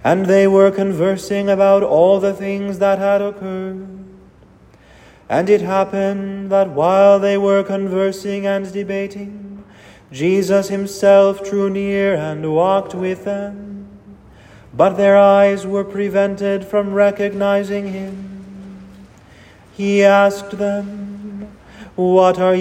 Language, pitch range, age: English, 185-200 Hz, 30-49